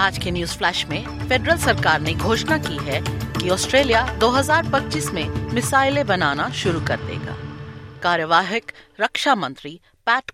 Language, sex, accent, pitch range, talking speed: Hindi, female, native, 175-255 Hz, 140 wpm